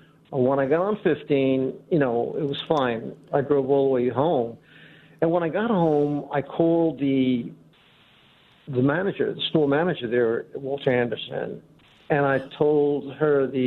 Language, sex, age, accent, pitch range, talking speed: English, male, 50-69, American, 135-155 Hz, 165 wpm